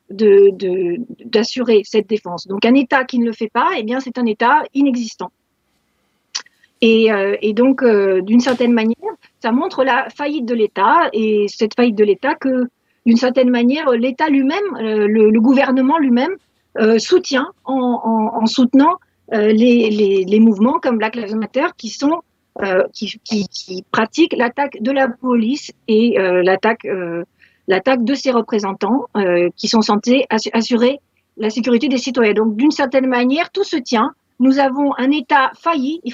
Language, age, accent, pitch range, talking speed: French, 40-59, French, 215-265 Hz, 175 wpm